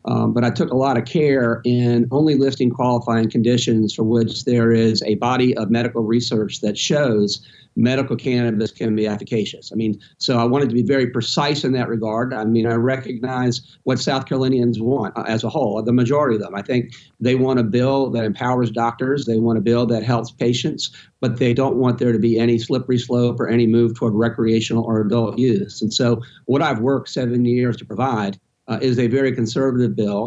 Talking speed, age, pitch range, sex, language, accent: 210 wpm, 50-69, 115-135 Hz, male, English, American